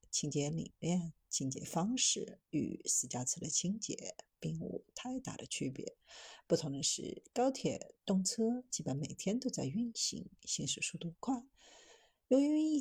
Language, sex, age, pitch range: Chinese, female, 50-69, 155-235 Hz